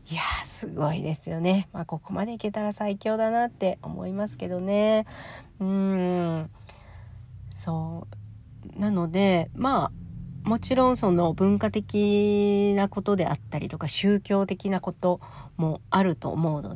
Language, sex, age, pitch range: Japanese, female, 40-59, 155-200 Hz